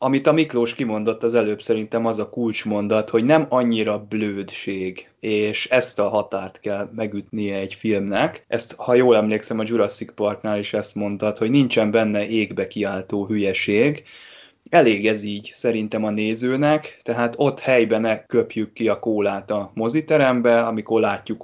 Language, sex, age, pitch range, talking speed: Hungarian, male, 20-39, 105-125 Hz, 155 wpm